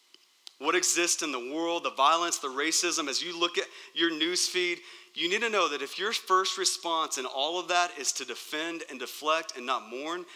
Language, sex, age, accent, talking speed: English, male, 40-59, American, 210 wpm